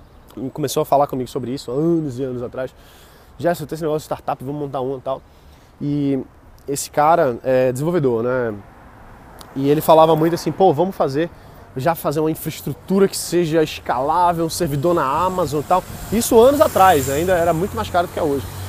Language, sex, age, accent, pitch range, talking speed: Portuguese, male, 20-39, Brazilian, 140-185 Hz, 195 wpm